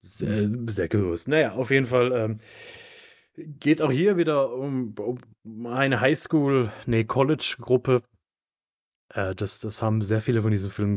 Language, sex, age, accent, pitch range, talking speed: German, male, 30-49, German, 105-125 Hz, 155 wpm